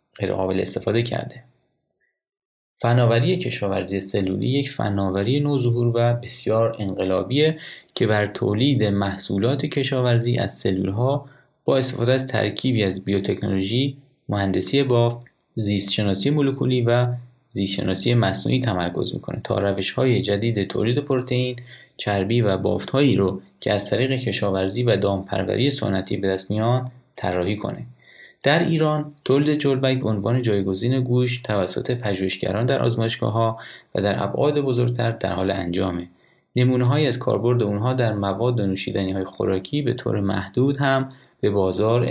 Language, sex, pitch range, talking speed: Persian, male, 100-130 Hz, 130 wpm